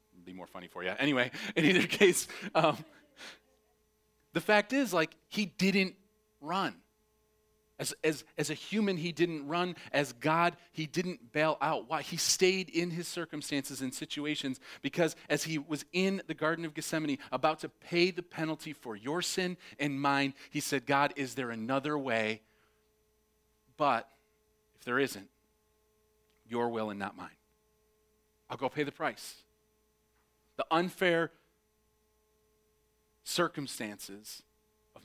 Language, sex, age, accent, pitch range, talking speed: English, male, 30-49, American, 105-175 Hz, 140 wpm